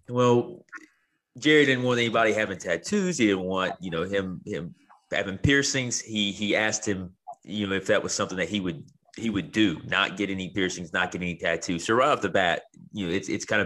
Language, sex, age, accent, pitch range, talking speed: English, male, 30-49, American, 90-110 Hz, 220 wpm